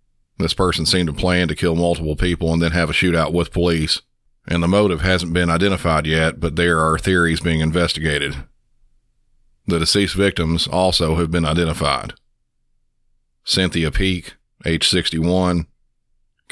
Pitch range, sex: 80-90 Hz, male